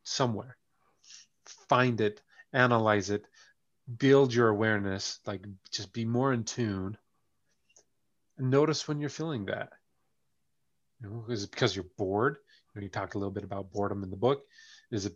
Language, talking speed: English, 165 wpm